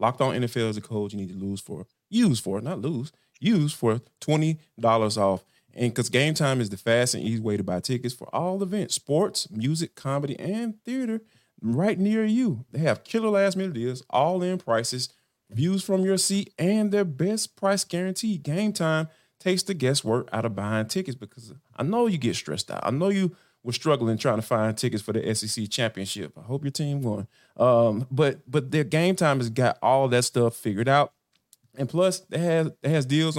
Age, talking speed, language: 30-49, 205 wpm, English